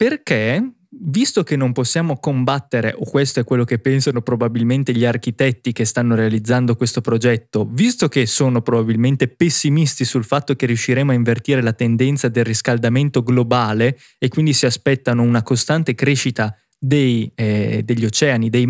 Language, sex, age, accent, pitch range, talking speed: Italian, male, 20-39, native, 120-160 Hz, 150 wpm